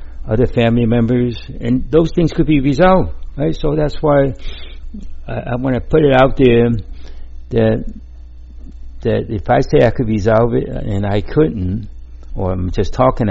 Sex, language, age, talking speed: male, English, 60-79, 160 wpm